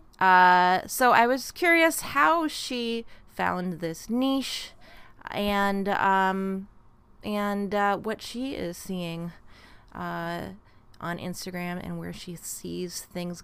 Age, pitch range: 30-49, 155-205 Hz